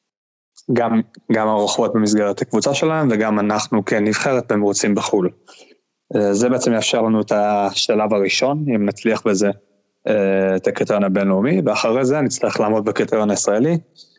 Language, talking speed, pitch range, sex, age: Hebrew, 125 wpm, 100-120 Hz, male, 20-39